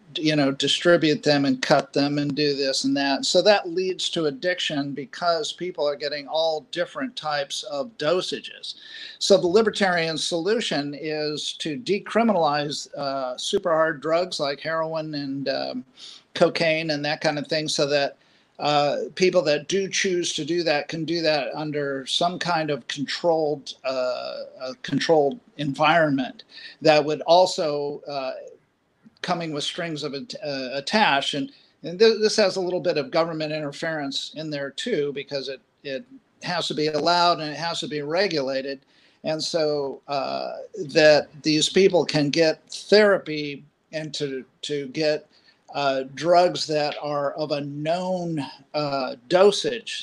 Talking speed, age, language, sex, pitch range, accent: 150 wpm, 50-69, English, male, 145-180 Hz, American